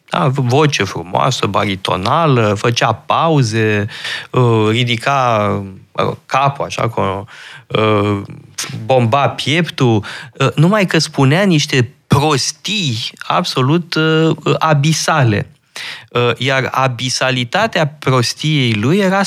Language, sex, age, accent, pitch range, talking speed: Romanian, male, 20-39, native, 120-160 Hz, 65 wpm